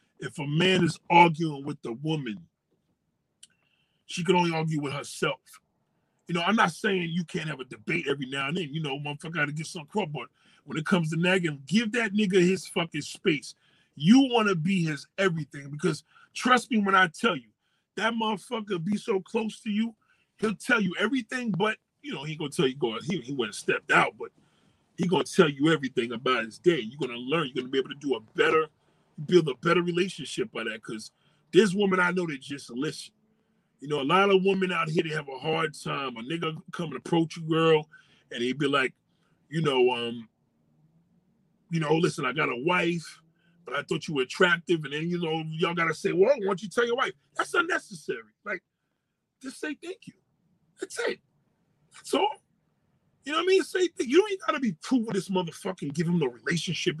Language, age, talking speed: English, 30-49, 220 wpm